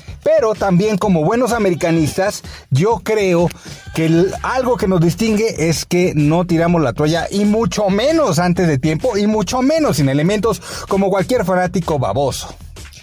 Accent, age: Mexican, 30-49